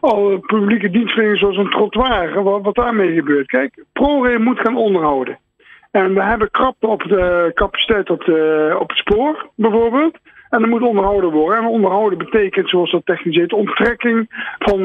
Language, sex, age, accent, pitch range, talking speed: Dutch, male, 50-69, Dutch, 180-235 Hz, 175 wpm